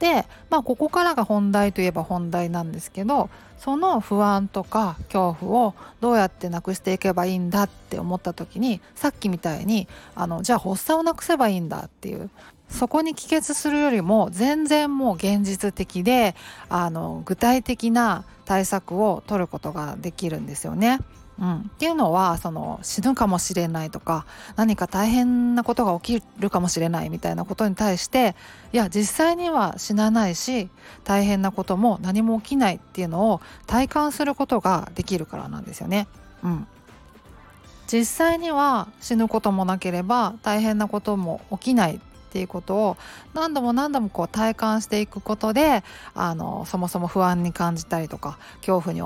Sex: female